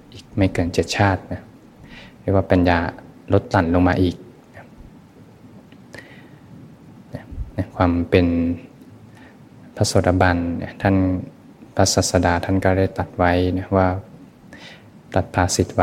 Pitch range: 90-100 Hz